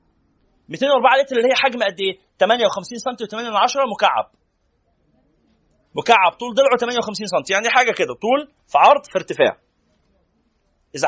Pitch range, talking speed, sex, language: 190-255 Hz, 130 wpm, male, Arabic